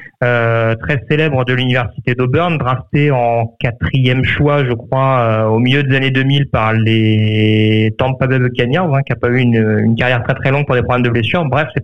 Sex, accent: male, French